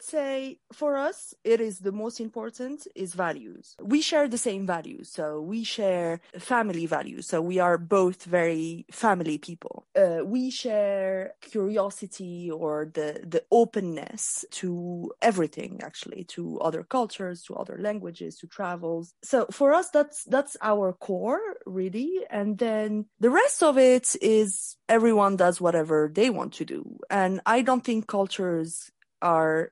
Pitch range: 165-225 Hz